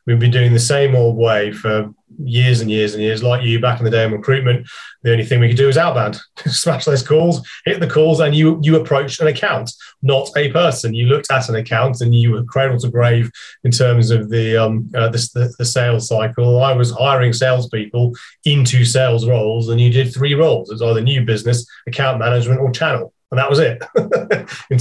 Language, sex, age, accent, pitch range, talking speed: English, male, 30-49, British, 115-135 Hz, 220 wpm